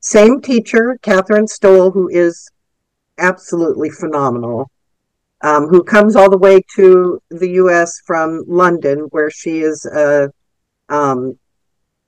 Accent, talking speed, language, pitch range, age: American, 120 wpm, English, 150-195 Hz, 50-69